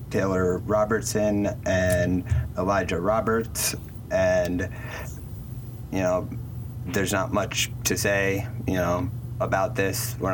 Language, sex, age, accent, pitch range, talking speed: English, male, 20-39, American, 95-120 Hz, 105 wpm